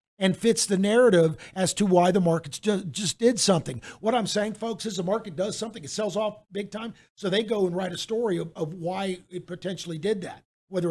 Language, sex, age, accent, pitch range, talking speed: English, male, 50-69, American, 160-195 Hz, 225 wpm